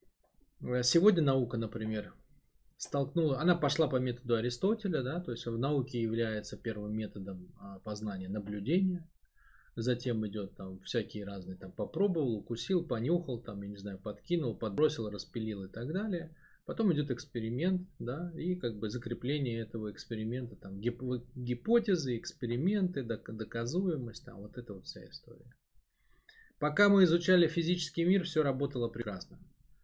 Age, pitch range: 20-39, 110-155 Hz